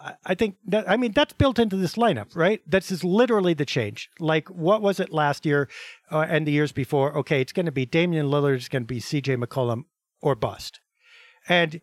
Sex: male